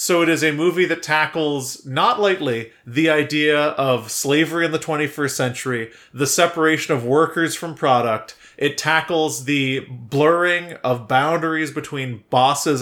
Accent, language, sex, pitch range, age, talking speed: American, English, male, 135-180 Hz, 30-49, 145 wpm